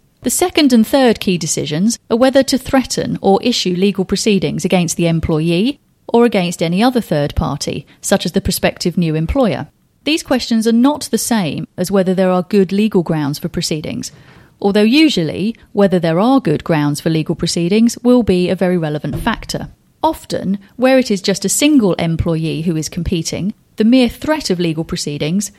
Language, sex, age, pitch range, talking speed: English, female, 30-49, 170-225 Hz, 180 wpm